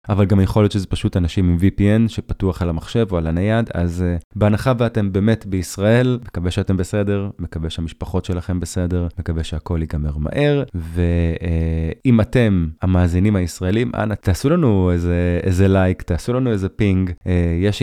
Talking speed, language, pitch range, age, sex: 165 wpm, English, 90-115 Hz, 20-39, male